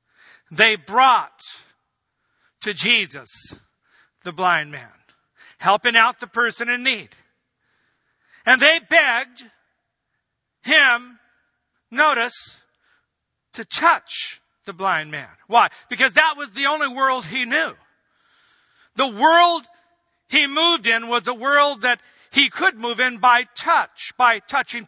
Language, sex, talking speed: English, male, 120 wpm